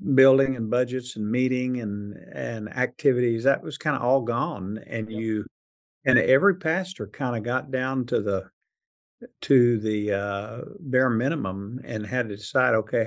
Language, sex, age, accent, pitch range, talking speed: English, male, 50-69, American, 110-145 Hz, 160 wpm